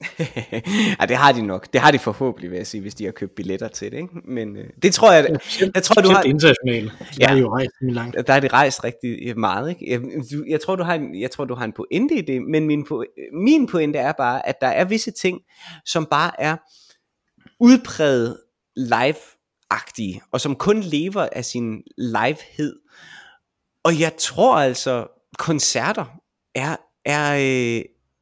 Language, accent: Danish, native